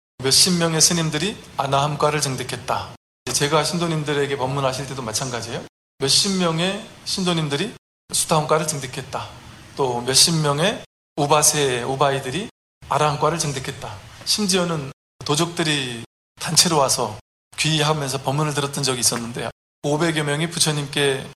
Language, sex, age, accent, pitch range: Korean, male, 20-39, native, 130-160 Hz